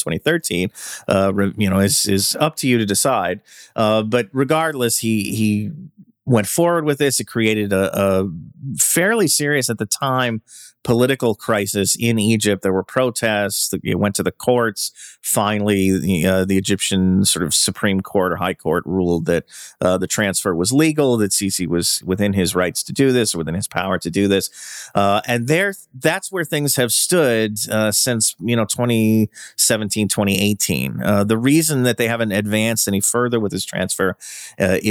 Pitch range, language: 95-120 Hz, English